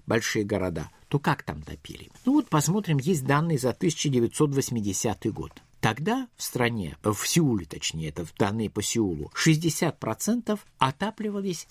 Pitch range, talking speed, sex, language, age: 115-165 Hz, 145 wpm, male, Russian, 50-69